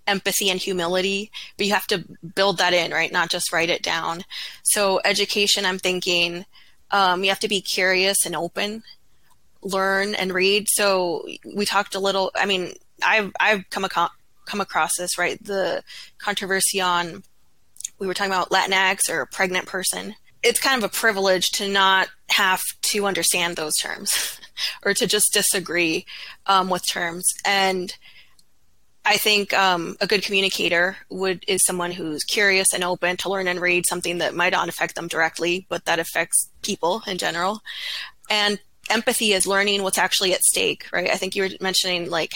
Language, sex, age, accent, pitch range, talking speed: English, female, 20-39, American, 180-205 Hz, 175 wpm